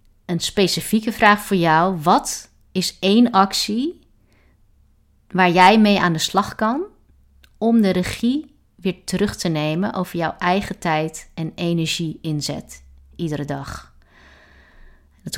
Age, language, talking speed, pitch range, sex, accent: 30-49, Dutch, 130 wpm, 165-210 Hz, female, Dutch